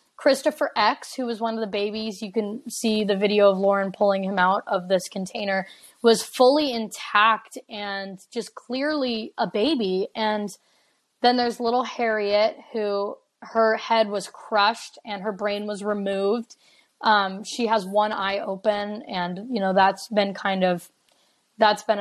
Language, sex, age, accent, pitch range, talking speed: English, female, 20-39, American, 195-225 Hz, 160 wpm